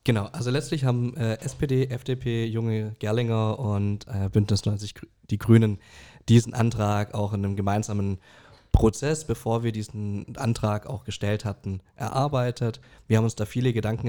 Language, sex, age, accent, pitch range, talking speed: German, male, 20-39, German, 105-125 Hz, 155 wpm